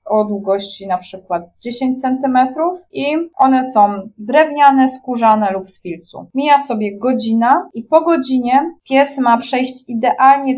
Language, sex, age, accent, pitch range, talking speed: Polish, female, 20-39, native, 215-270 Hz, 135 wpm